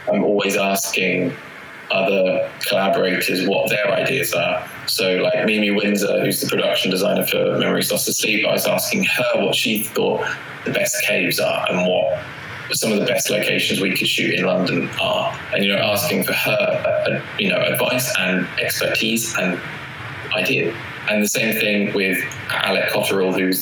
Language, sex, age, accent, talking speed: English, male, 20-39, British, 170 wpm